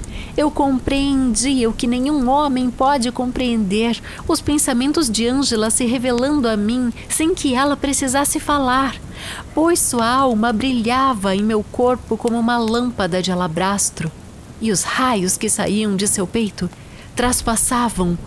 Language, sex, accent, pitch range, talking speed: Portuguese, female, Brazilian, 200-285 Hz, 140 wpm